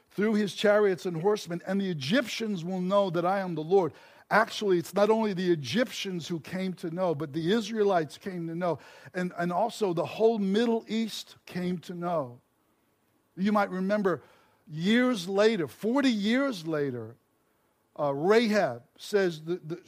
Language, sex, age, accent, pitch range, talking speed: English, male, 60-79, American, 165-205 Hz, 160 wpm